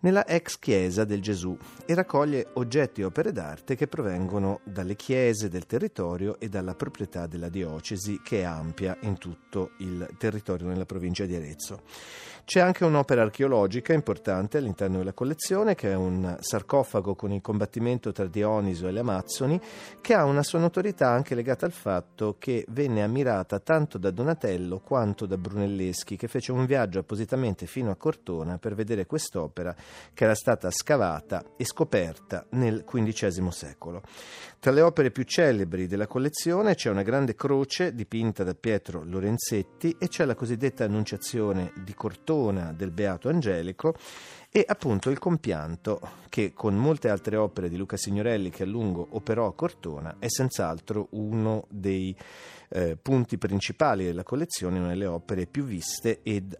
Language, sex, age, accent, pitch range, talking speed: Italian, male, 40-59, native, 95-130 Hz, 160 wpm